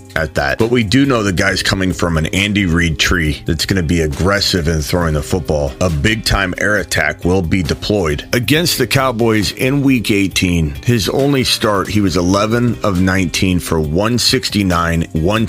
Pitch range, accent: 80-105 Hz, American